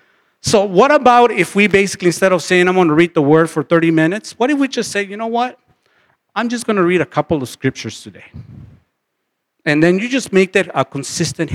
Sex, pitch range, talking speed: male, 140-180 Hz, 230 wpm